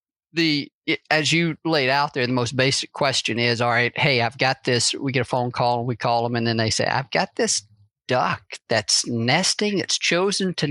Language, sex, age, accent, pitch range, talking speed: English, male, 50-69, American, 110-140 Hz, 220 wpm